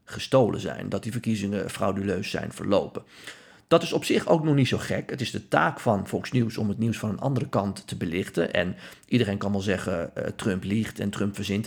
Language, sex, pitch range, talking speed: Dutch, male, 105-120 Hz, 225 wpm